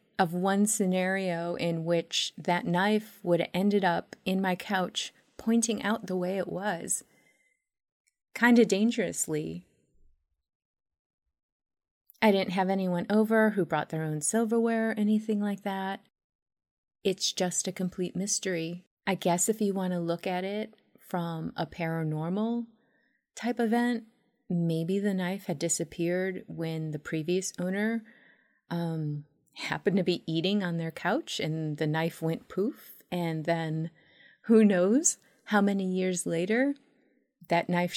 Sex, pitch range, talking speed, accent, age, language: female, 165-210 Hz, 140 wpm, American, 30-49, English